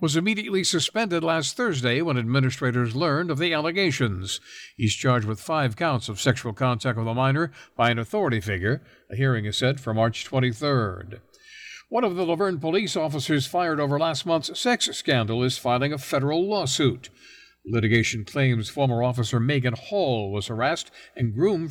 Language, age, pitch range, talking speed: English, 60-79, 115-165 Hz, 165 wpm